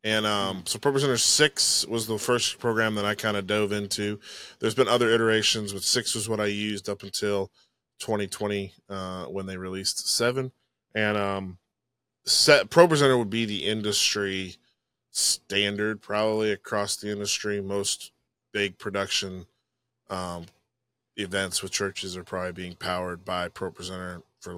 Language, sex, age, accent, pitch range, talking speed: English, male, 20-39, American, 95-110 Hz, 150 wpm